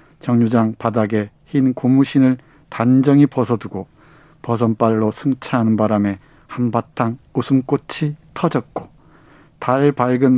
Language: Korean